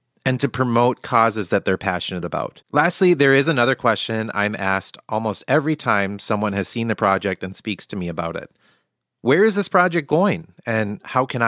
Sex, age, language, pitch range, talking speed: male, 30-49, English, 100-125 Hz, 195 wpm